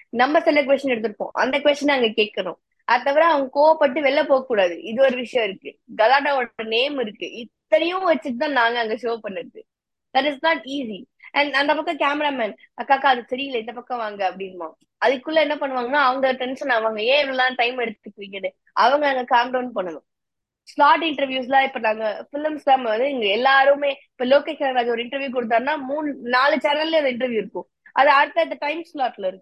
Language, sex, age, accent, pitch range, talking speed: Tamil, female, 20-39, native, 225-290 Hz, 80 wpm